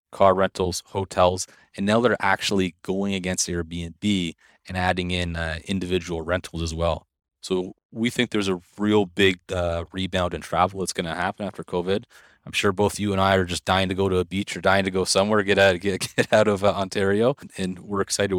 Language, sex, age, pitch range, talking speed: English, male, 30-49, 85-100 Hz, 205 wpm